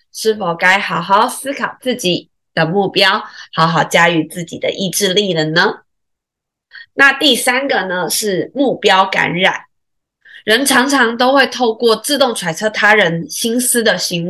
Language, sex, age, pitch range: Chinese, female, 20-39, 175-235 Hz